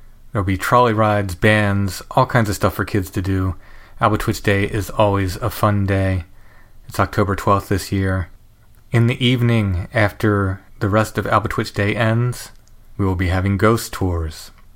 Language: English